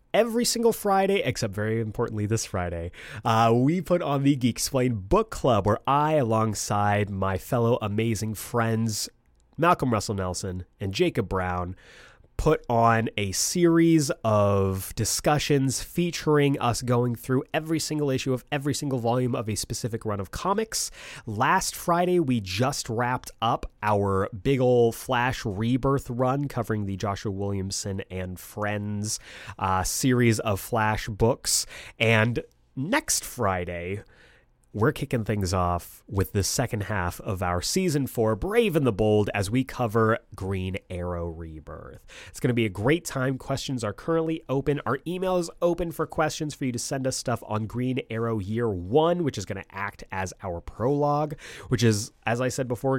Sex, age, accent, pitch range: male, 30-49, American, 105-140 Hz